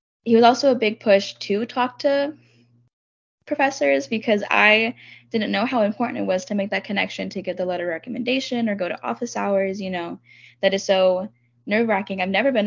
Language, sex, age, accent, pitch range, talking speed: English, female, 10-29, American, 185-225 Hz, 200 wpm